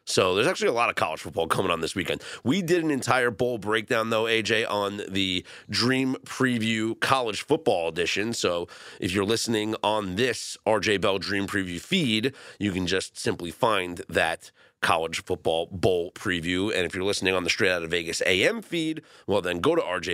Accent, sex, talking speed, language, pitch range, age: American, male, 195 wpm, English, 95-130 Hz, 30-49